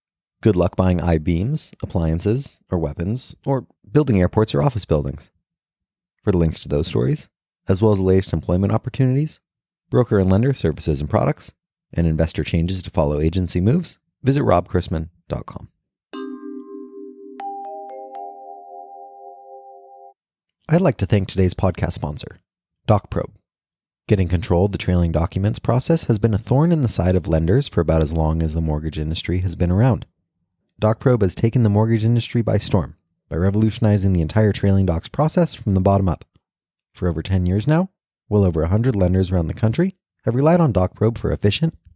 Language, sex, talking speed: English, male, 160 wpm